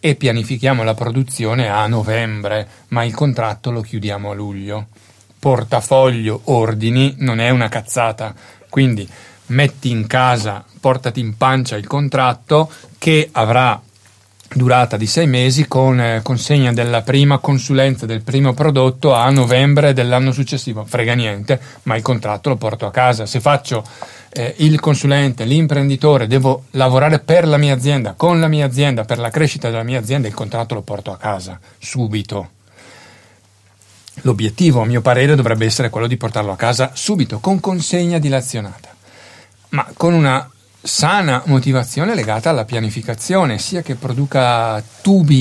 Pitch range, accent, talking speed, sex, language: 110-140 Hz, native, 150 wpm, male, Italian